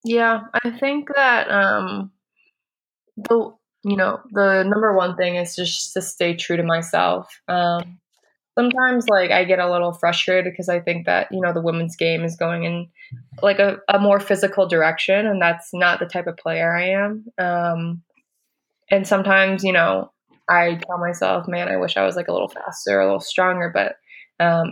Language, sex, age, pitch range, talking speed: English, female, 20-39, 170-190 Hz, 180 wpm